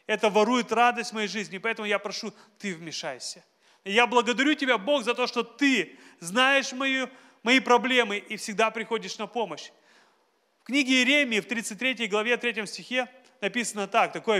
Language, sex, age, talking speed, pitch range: Russian, male, 30-49, 165 wpm, 185-245 Hz